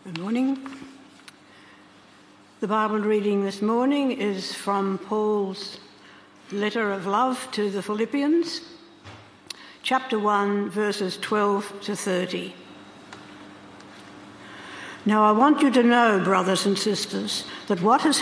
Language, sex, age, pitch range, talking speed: English, female, 60-79, 195-230 Hz, 110 wpm